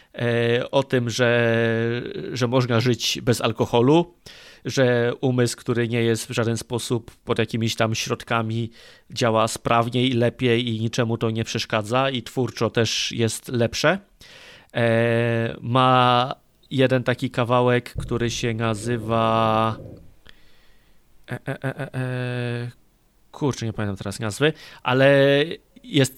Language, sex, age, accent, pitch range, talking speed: Polish, male, 30-49, native, 115-130 Hz, 110 wpm